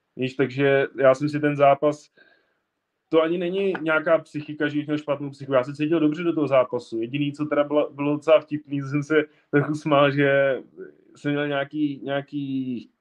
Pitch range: 125-145 Hz